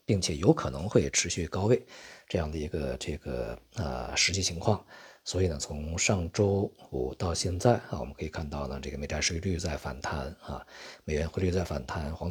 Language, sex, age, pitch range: Chinese, male, 50-69, 75-100 Hz